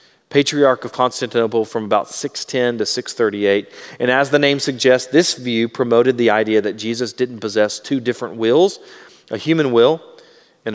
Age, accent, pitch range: 40-59, American, 120-150 Hz